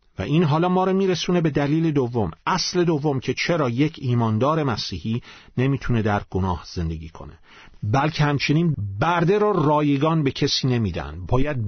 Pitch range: 105-150 Hz